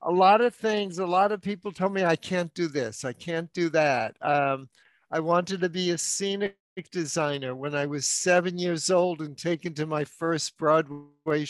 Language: English